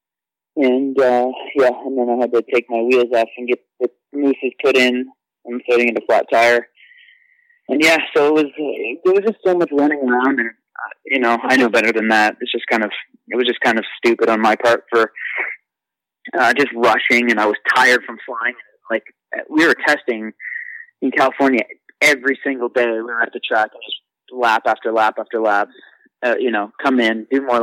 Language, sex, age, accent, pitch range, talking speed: English, male, 20-39, American, 120-150 Hz, 215 wpm